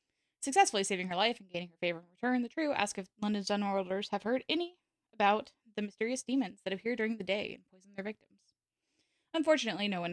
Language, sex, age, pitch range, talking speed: English, female, 10-29, 190-260 Hz, 215 wpm